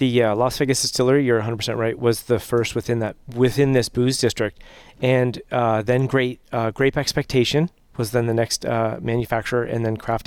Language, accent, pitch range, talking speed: English, American, 115-135 Hz, 195 wpm